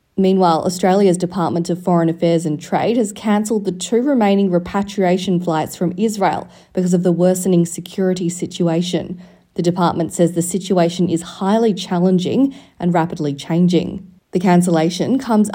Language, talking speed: English, 145 wpm